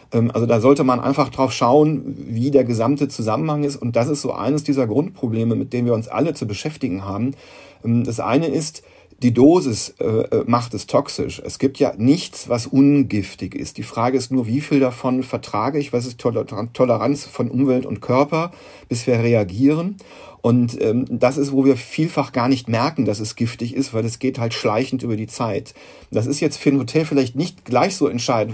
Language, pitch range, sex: German, 120-140 Hz, male